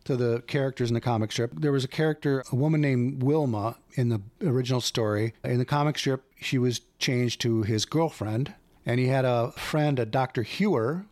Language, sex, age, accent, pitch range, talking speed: English, male, 40-59, American, 115-145 Hz, 200 wpm